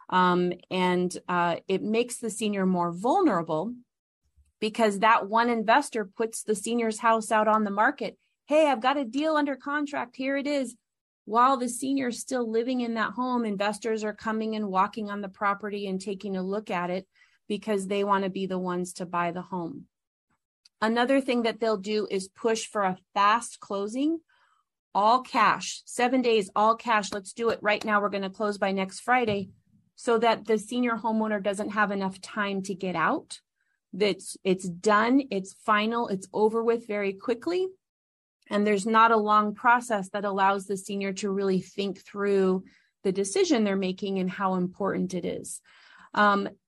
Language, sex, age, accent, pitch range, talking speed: English, female, 30-49, American, 195-235 Hz, 180 wpm